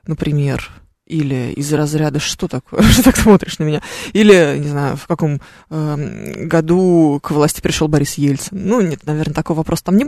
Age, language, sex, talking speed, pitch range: 20-39, Russian, female, 180 wpm, 155-205 Hz